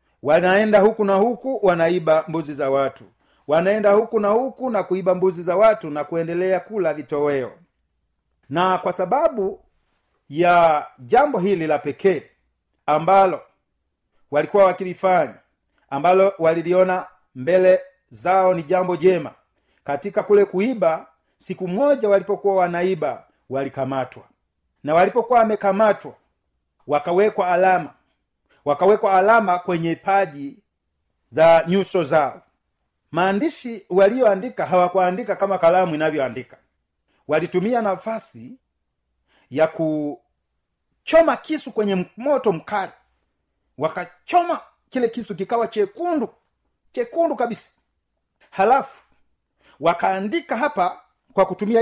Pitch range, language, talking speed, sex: 150-210 Hz, Swahili, 100 wpm, male